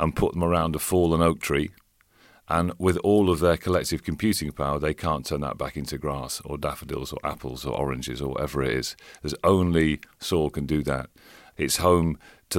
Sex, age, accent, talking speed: male, 40-59, British, 200 wpm